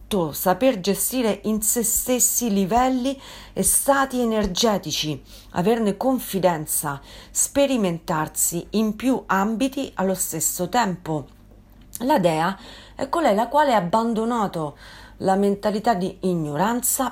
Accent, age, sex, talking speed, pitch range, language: native, 40-59, female, 105 wpm, 160-240 Hz, Italian